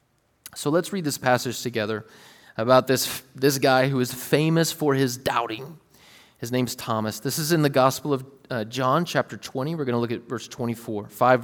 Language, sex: English, male